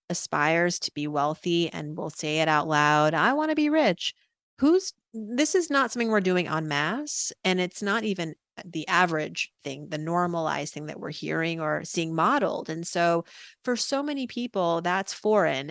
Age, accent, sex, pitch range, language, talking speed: 30-49, American, female, 160-215 Hz, English, 185 wpm